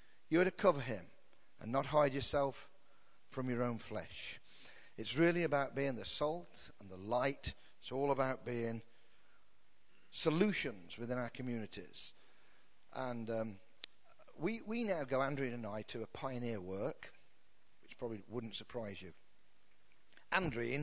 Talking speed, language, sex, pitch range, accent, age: 140 wpm, English, male, 110-140 Hz, British, 40-59